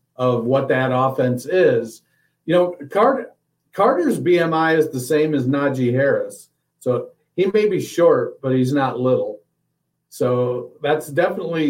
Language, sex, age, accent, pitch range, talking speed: English, male, 50-69, American, 125-160 Hz, 140 wpm